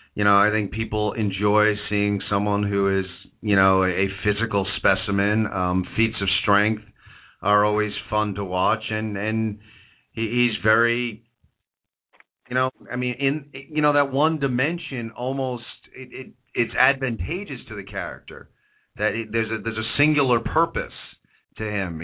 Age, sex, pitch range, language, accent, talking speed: 40-59, male, 95-115 Hz, English, American, 155 wpm